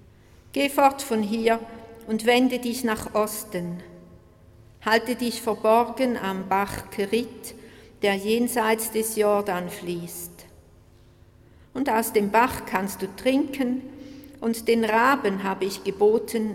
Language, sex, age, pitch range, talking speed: German, female, 60-79, 145-220 Hz, 120 wpm